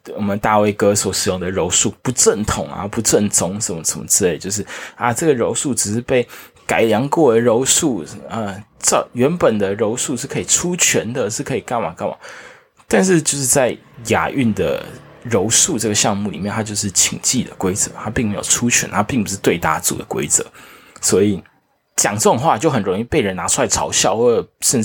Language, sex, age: Chinese, male, 20-39